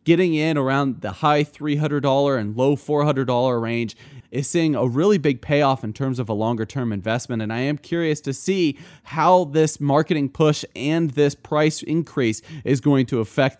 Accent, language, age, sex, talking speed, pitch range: American, English, 30-49, male, 175 wpm, 130-155 Hz